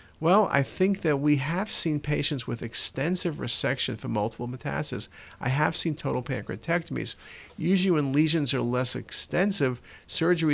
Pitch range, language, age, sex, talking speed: 125-160 Hz, English, 50-69, male, 150 wpm